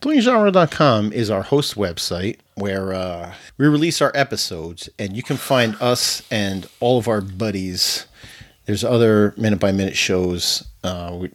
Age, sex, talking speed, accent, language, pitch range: 40-59, male, 150 wpm, American, English, 100-130 Hz